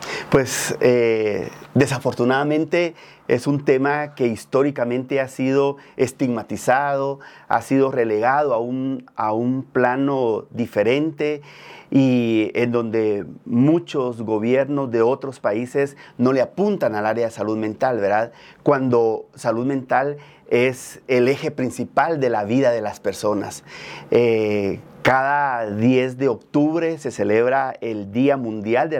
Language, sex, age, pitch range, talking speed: Spanish, male, 40-59, 120-145 Hz, 125 wpm